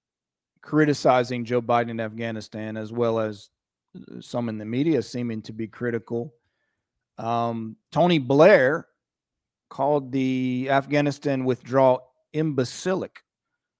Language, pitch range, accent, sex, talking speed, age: English, 110-135 Hz, American, male, 105 wpm, 40-59